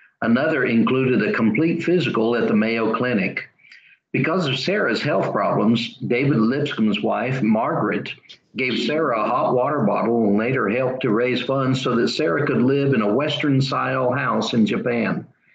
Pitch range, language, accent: 115-140 Hz, English, American